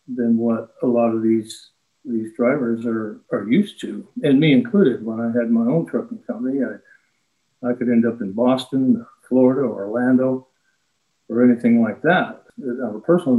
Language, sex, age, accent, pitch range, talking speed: English, male, 50-69, American, 115-125 Hz, 180 wpm